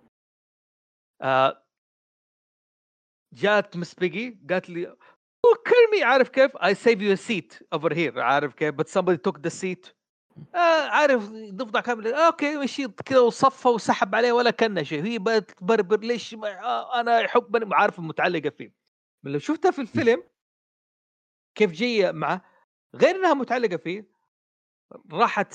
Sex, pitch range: male, 155-230 Hz